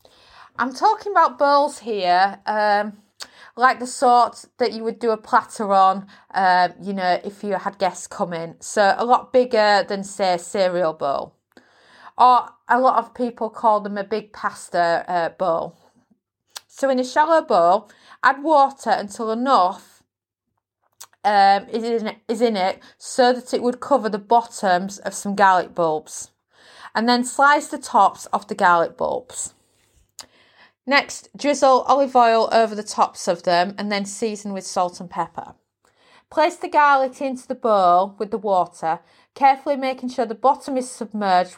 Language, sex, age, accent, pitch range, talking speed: English, female, 30-49, British, 195-250 Hz, 160 wpm